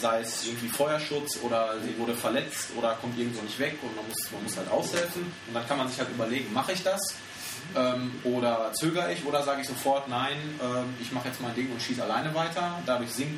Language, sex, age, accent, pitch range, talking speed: German, male, 20-39, German, 115-145 Hz, 230 wpm